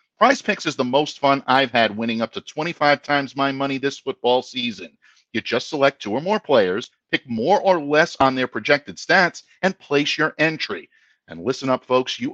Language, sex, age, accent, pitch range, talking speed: English, male, 50-69, American, 135-195 Hz, 205 wpm